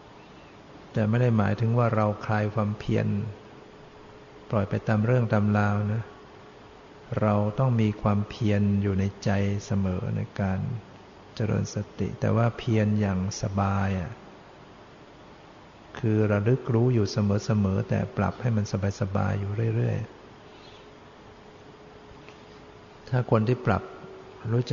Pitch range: 100-115 Hz